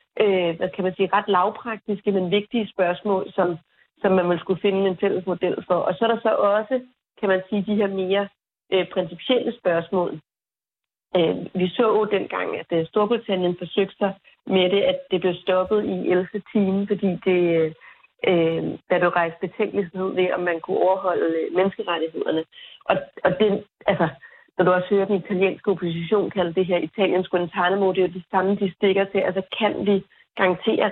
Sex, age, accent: female, 30-49, native